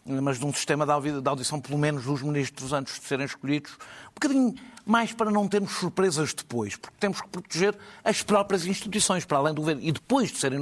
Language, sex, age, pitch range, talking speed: Portuguese, male, 60-79, 140-205 Hz, 210 wpm